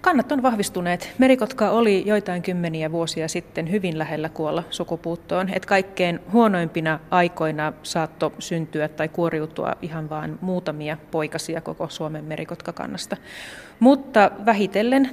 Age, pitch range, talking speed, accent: 30-49, 165-205 Hz, 120 wpm, native